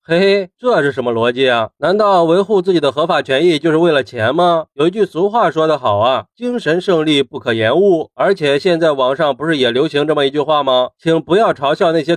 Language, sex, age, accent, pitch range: Chinese, male, 30-49, native, 145-195 Hz